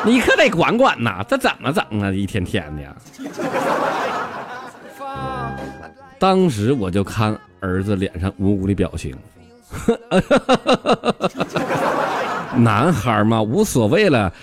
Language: Chinese